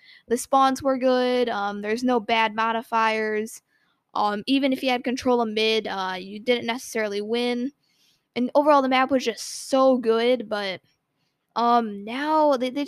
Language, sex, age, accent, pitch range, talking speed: English, female, 10-29, American, 220-255 Hz, 165 wpm